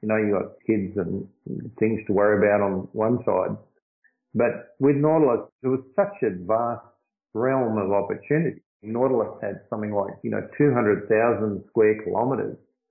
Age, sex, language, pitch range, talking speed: 50-69, male, English, 110-130 Hz, 155 wpm